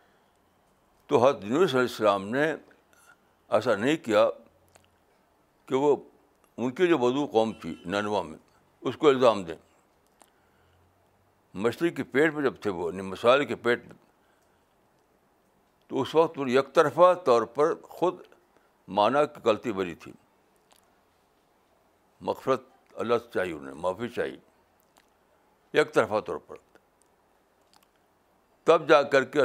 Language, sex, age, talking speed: Urdu, male, 60-79, 125 wpm